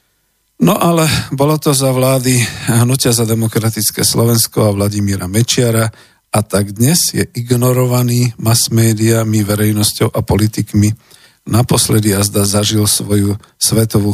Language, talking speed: Slovak, 115 wpm